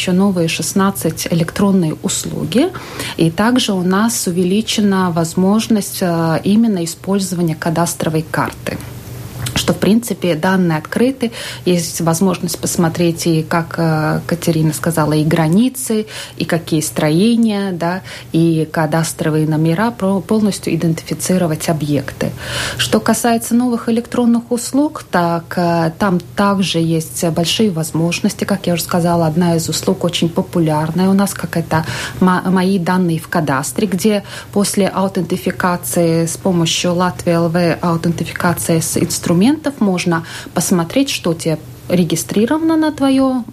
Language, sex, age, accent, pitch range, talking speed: Russian, female, 30-49, native, 165-200 Hz, 115 wpm